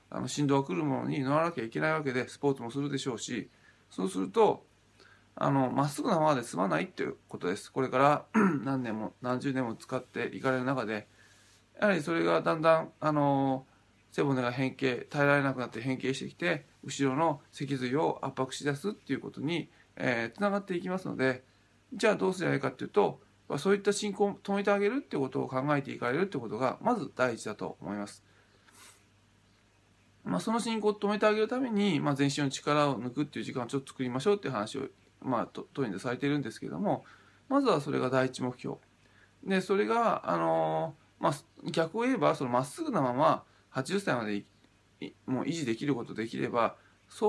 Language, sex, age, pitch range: Japanese, male, 20-39, 115-160 Hz